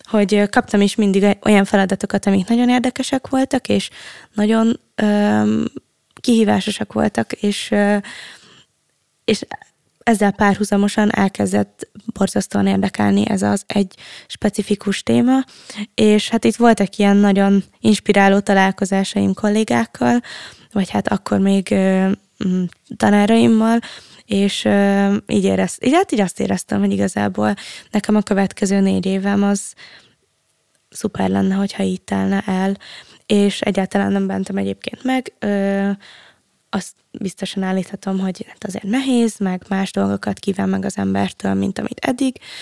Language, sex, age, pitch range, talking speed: Hungarian, female, 20-39, 190-215 Hz, 120 wpm